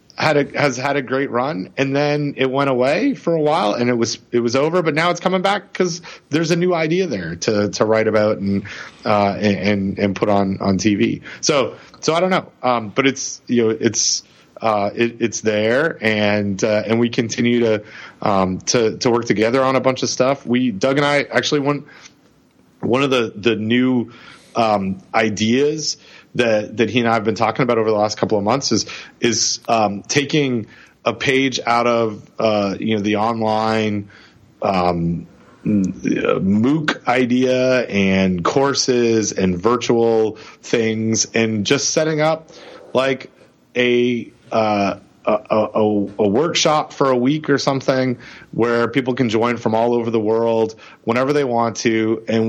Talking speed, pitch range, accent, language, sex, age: 180 wpm, 110-135 Hz, American, English, male, 30-49